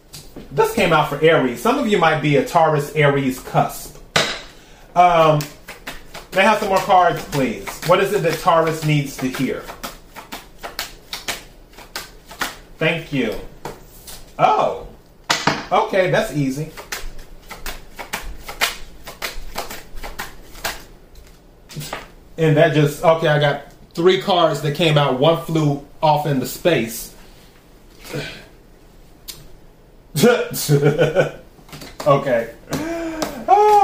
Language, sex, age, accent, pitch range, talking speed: English, male, 30-49, American, 150-200 Hz, 95 wpm